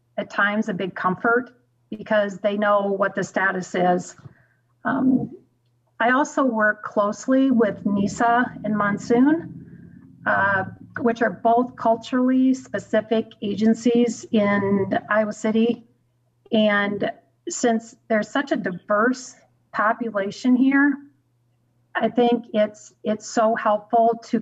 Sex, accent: female, American